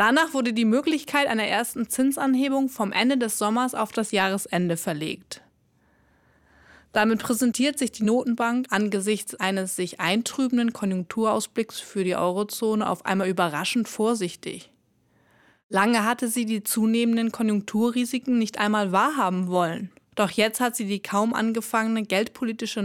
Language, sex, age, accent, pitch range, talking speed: German, female, 30-49, German, 195-235 Hz, 130 wpm